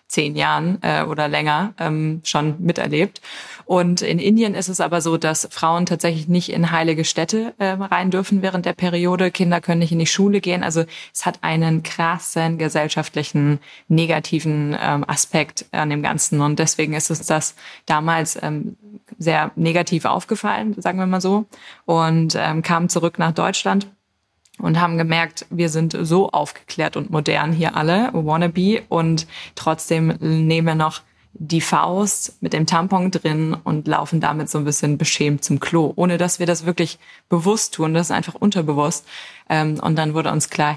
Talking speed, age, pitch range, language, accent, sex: 170 wpm, 20-39, 155-175 Hz, German, German, female